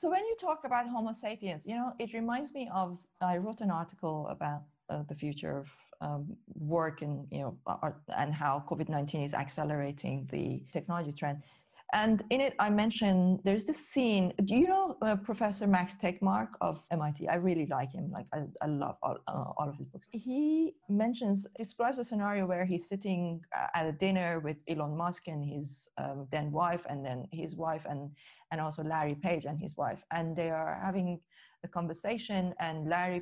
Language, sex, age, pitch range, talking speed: English, female, 30-49, 150-190 Hz, 195 wpm